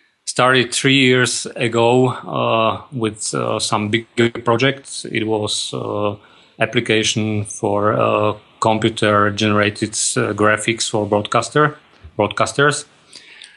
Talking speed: 95 wpm